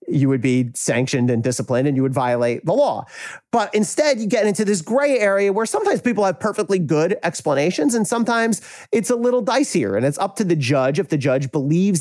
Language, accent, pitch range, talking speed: English, American, 135-210 Hz, 215 wpm